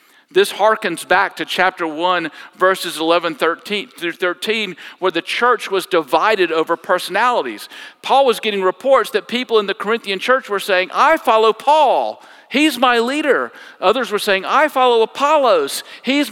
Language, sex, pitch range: English, male, 190-275 Hz